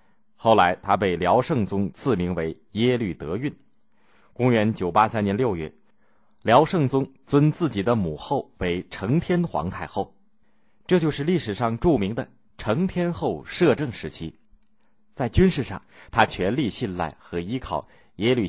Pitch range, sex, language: 90-130 Hz, male, Chinese